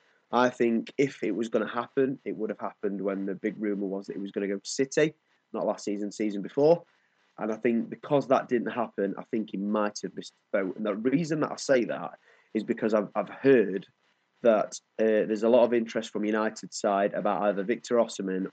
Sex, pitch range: male, 100-115 Hz